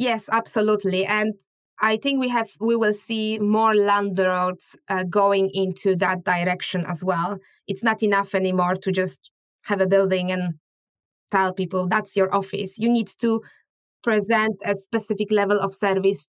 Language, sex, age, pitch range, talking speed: English, female, 20-39, 190-220 Hz, 160 wpm